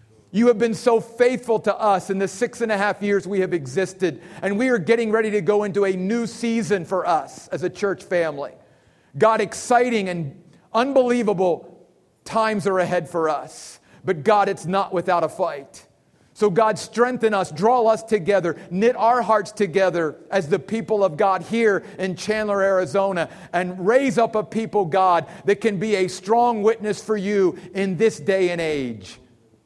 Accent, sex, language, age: American, male, English, 40-59